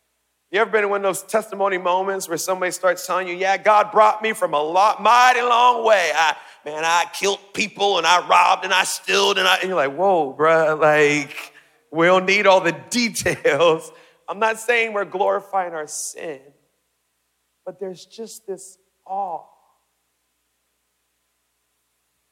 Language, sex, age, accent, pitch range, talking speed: English, male, 40-59, American, 145-220 Hz, 165 wpm